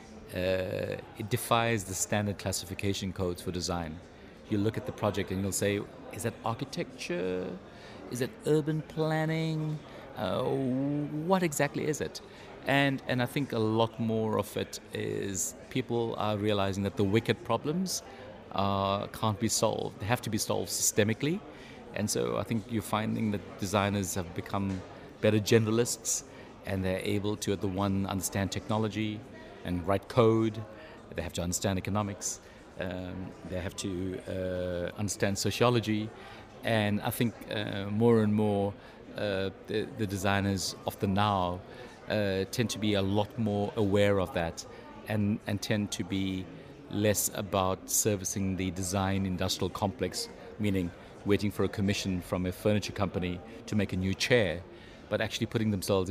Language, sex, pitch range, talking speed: English, male, 95-110 Hz, 155 wpm